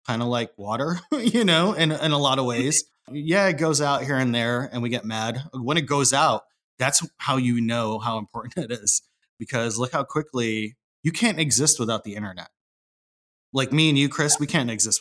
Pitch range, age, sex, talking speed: 110-140 Hz, 30-49, male, 210 wpm